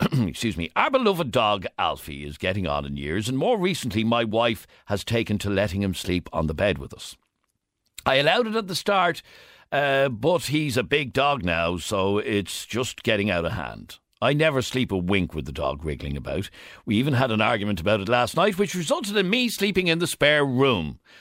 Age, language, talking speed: 60-79, English, 210 wpm